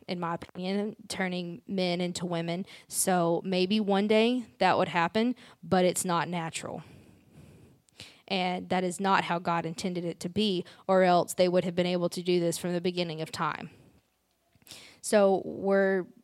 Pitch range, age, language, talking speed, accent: 175-200 Hz, 20-39, English, 165 wpm, American